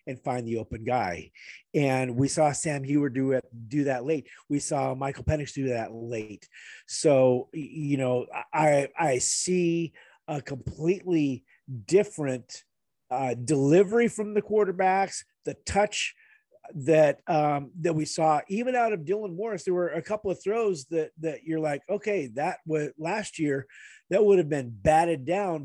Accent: American